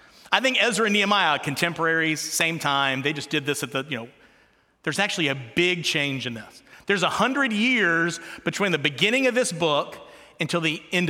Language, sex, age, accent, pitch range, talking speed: English, male, 30-49, American, 165-220 Hz, 195 wpm